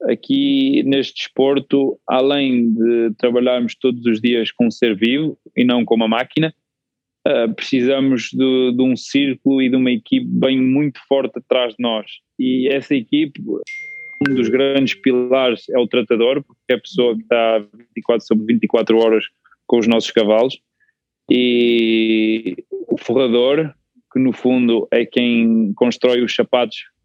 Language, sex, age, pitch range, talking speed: Portuguese, male, 20-39, 115-135 Hz, 150 wpm